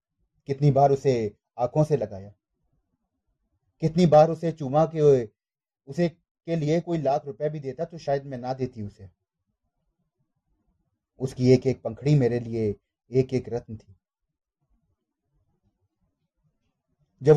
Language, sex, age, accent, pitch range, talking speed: Hindi, male, 30-49, native, 120-155 Hz, 110 wpm